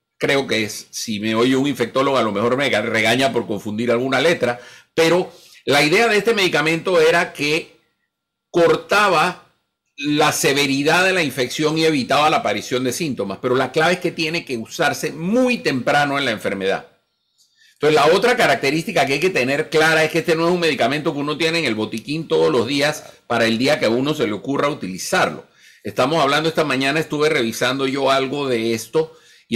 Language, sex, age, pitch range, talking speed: Spanish, male, 50-69, 120-170 Hz, 195 wpm